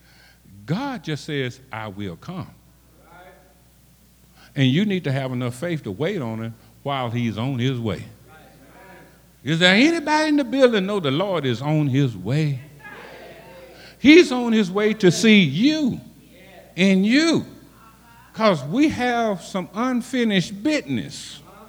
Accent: American